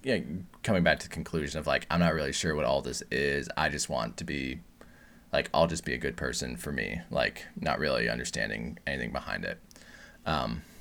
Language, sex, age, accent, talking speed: English, male, 20-39, American, 210 wpm